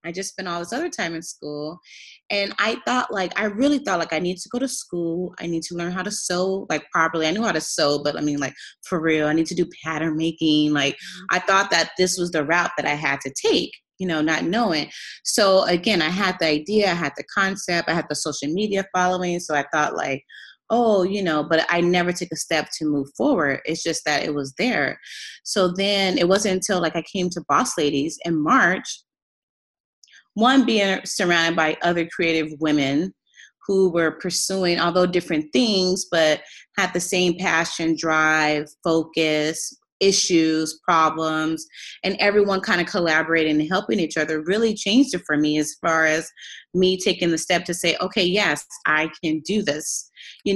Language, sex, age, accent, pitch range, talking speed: English, female, 20-39, American, 155-185 Hz, 200 wpm